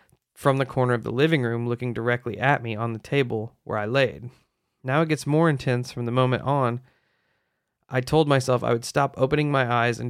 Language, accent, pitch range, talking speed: English, American, 120-140 Hz, 215 wpm